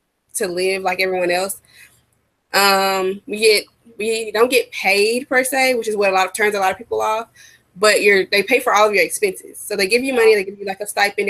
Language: English